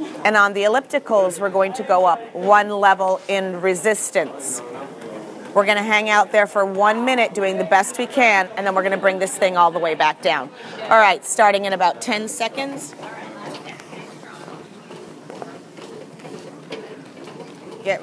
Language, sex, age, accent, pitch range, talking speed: English, female, 40-59, American, 190-220 Hz, 155 wpm